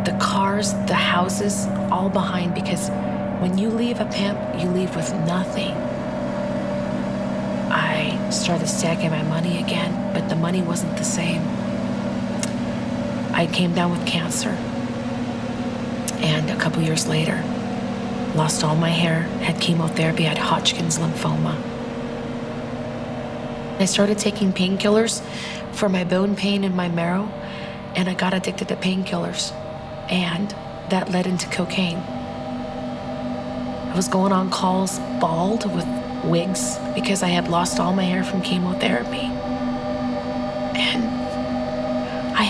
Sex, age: female, 40-59